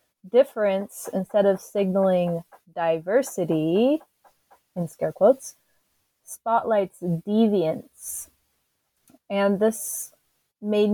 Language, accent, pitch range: English, American, 180-215 Hz